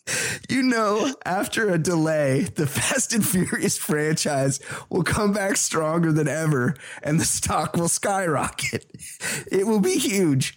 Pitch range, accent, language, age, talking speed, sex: 145-200 Hz, American, English, 30-49, 140 wpm, male